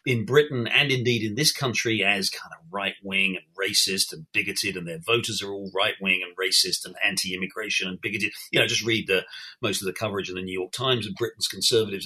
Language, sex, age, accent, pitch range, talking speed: English, male, 50-69, British, 100-135 Hz, 230 wpm